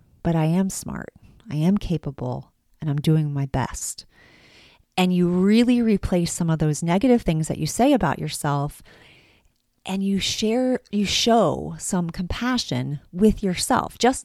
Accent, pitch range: American, 160-220 Hz